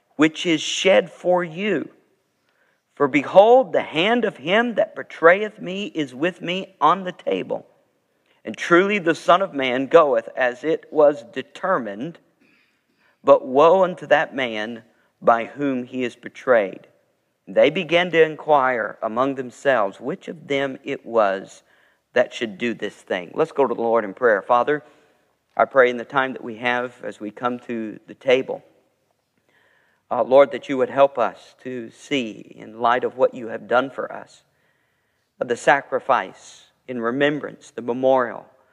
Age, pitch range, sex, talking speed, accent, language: 50-69, 125-155 Hz, male, 160 wpm, American, English